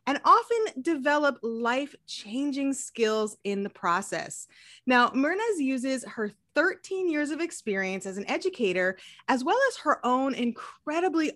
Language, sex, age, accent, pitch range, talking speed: English, female, 20-39, American, 210-300 Hz, 130 wpm